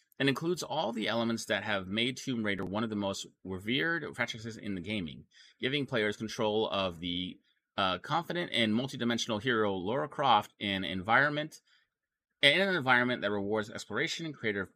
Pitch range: 95-125 Hz